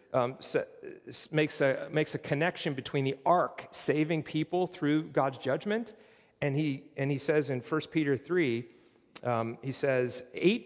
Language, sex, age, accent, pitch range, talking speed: English, male, 40-59, American, 130-165 Hz, 165 wpm